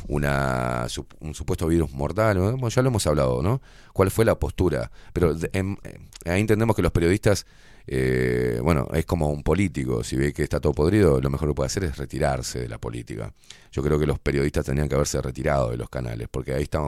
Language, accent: Spanish, Argentinian